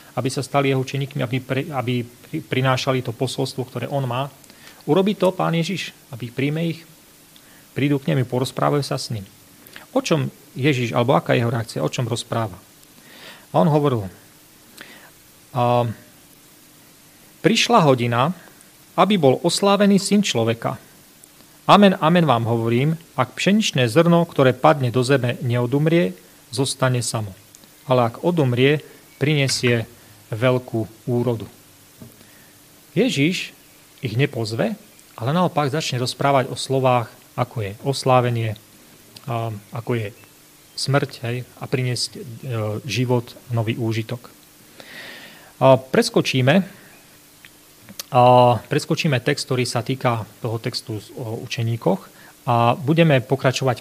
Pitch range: 120-145 Hz